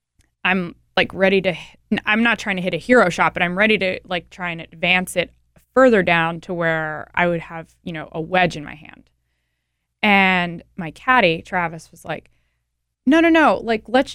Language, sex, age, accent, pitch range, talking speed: English, female, 20-39, American, 165-205 Hz, 195 wpm